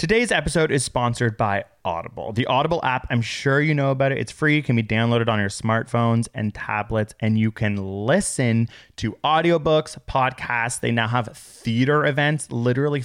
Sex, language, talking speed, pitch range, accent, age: male, English, 175 wpm, 105-130 Hz, American, 20-39